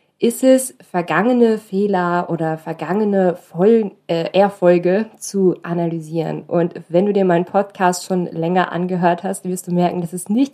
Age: 20-39